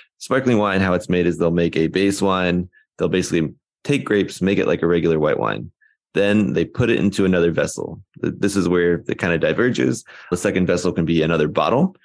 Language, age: English, 20-39